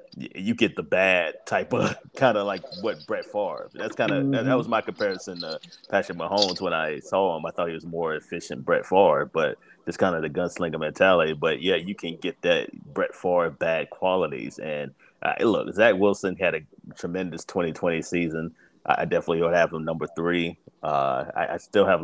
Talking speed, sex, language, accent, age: 200 wpm, male, English, American, 30-49